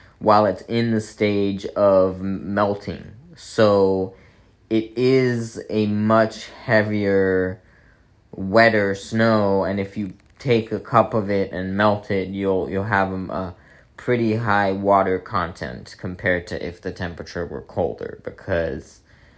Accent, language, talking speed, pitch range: American, English, 130 wpm, 90-110 Hz